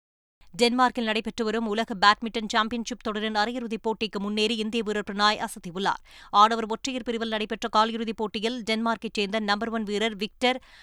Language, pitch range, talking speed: Tamil, 215-235 Hz, 145 wpm